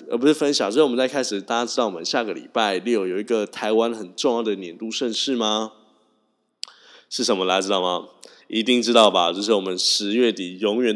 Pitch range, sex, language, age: 105-160 Hz, male, Chinese, 20-39